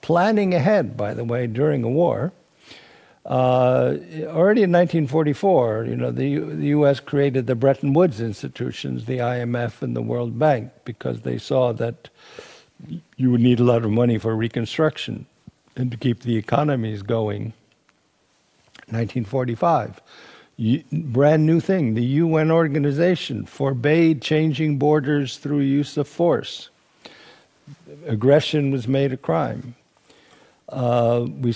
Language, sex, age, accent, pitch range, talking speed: English, male, 60-79, American, 115-150 Hz, 130 wpm